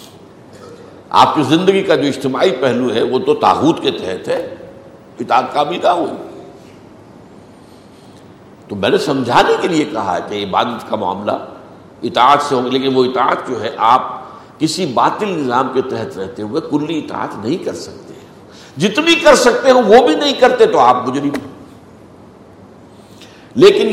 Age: 60-79